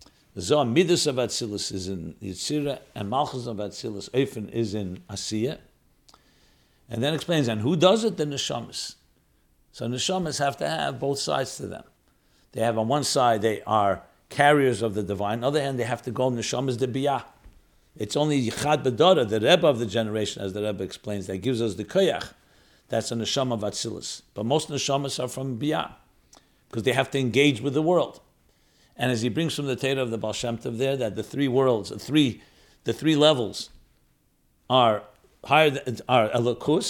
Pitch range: 110-145 Hz